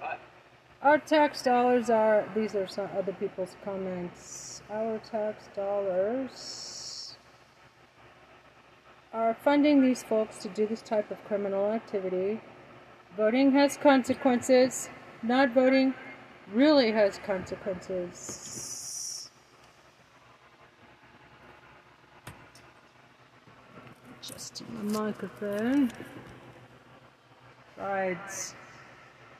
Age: 40-59